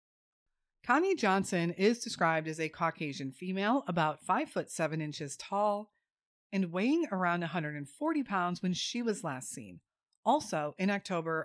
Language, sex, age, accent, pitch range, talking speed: English, female, 30-49, American, 160-225 Hz, 140 wpm